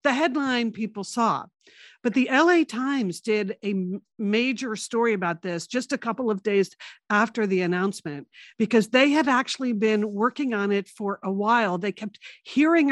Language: English